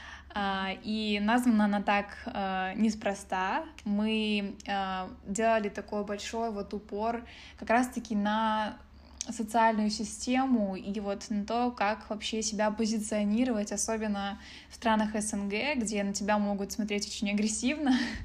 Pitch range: 200-225 Hz